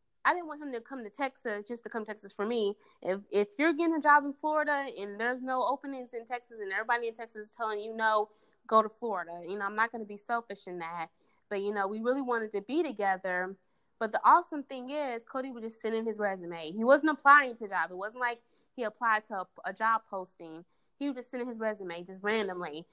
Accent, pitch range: American, 190-240 Hz